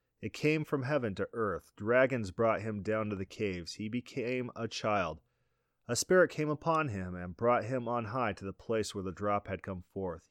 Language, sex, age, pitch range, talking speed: English, male, 30-49, 95-130 Hz, 210 wpm